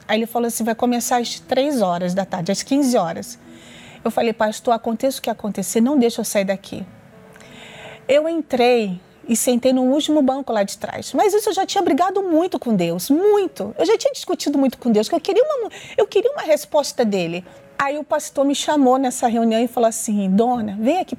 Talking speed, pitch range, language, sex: 210 wpm, 220-310 Hz, Portuguese, female